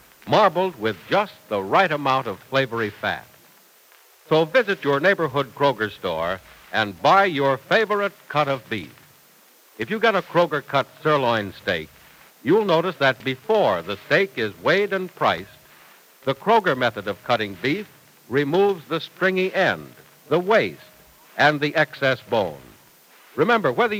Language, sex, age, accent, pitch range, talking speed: English, male, 60-79, American, 125-185 Hz, 145 wpm